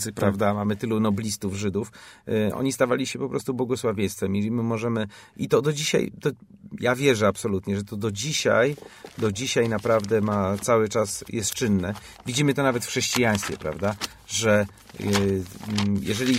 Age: 40-59